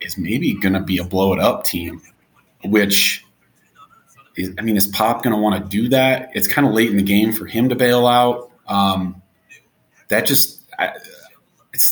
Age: 30-49